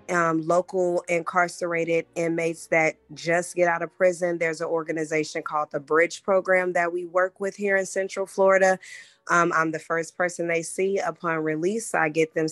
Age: 20-39